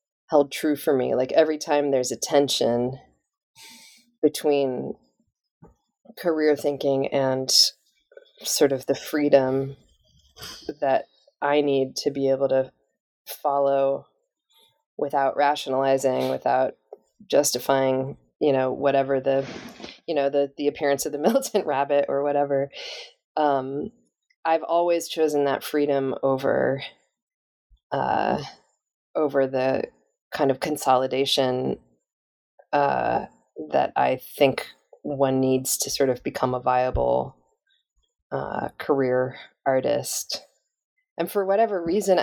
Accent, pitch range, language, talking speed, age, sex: American, 135-155 Hz, English, 110 wpm, 20-39, female